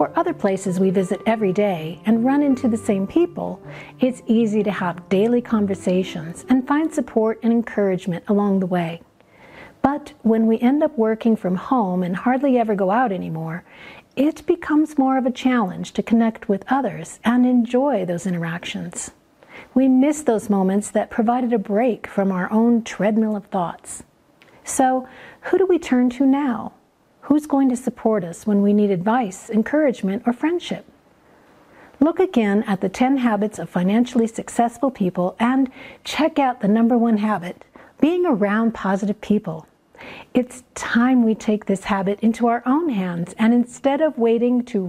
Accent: American